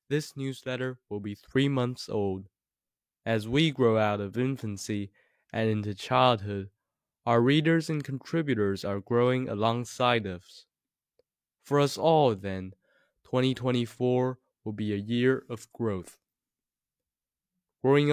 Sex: male